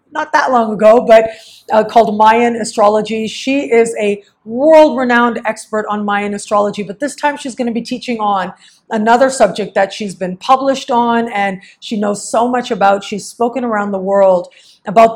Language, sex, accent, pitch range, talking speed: English, female, American, 205-250 Hz, 180 wpm